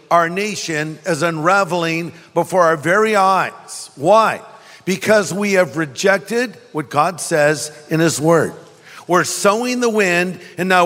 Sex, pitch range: male, 155-195 Hz